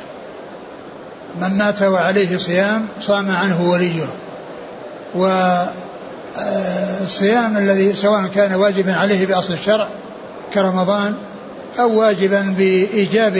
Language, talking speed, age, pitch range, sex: Arabic, 85 wpm, 60-79, 190-215 Hz, male